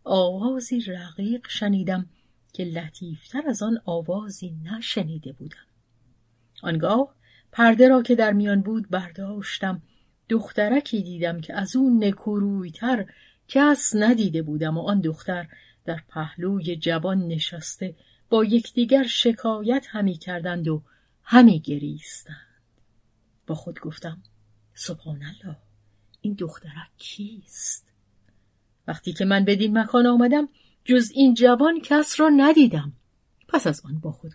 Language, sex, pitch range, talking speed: Persian, female, 155-215 Hz, 120 wpm